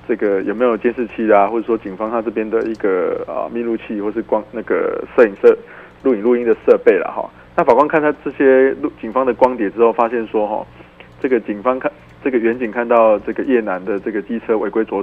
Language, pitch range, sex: Chinese, 105-130 Hz, male